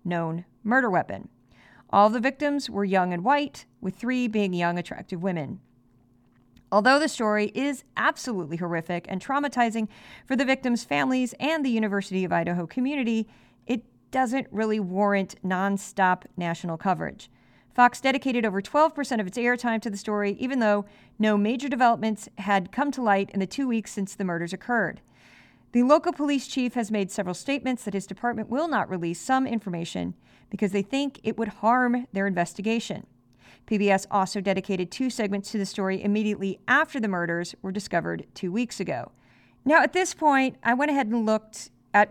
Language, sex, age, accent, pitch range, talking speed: English, female, 40-59, American, 185-245 Hz, 170 wpm